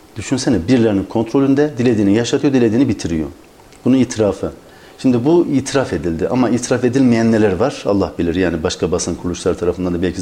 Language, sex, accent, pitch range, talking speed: Turkish, male, native, 95-115 Hz, 160 wpm